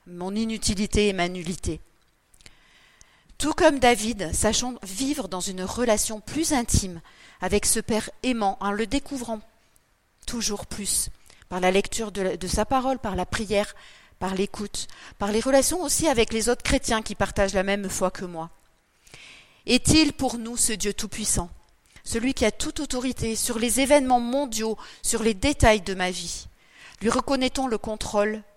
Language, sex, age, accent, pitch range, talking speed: French, female, 40-59, French, 205-260 Hz, 160 wpm